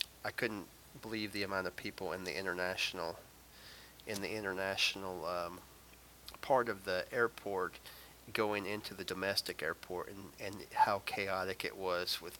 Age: 30-49